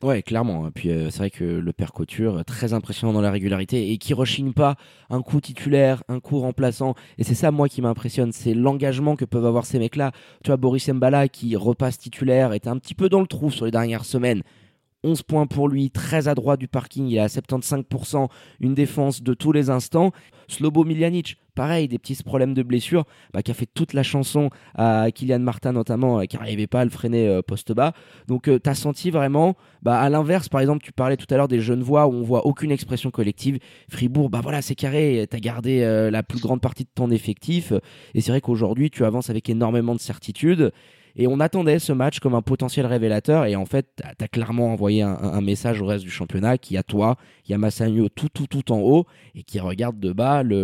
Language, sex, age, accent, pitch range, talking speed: French, male, 20-39, French, 115-140 Hz, 230 wpm